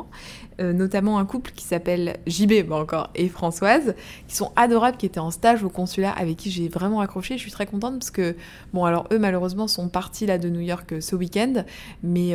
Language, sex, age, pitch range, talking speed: French, female, 20-39, 185-235 Hz, 210 wpm